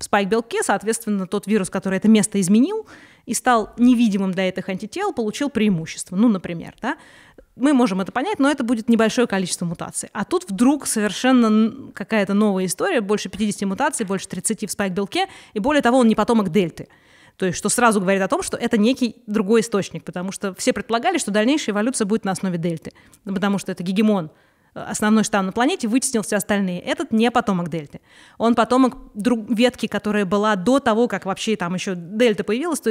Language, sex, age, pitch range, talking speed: Russian, female, 20-39, 190-235 Hz, 185 wpm